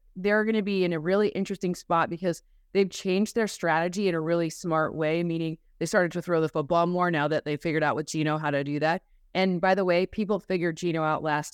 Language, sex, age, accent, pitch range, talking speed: English, female, 20-39, American, 160-195 Hz, 245 wpm